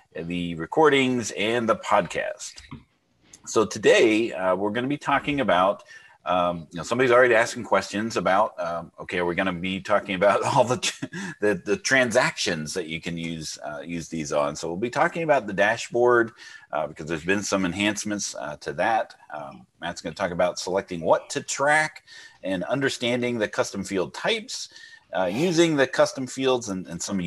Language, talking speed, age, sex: English, 185 wpm, 30-49, male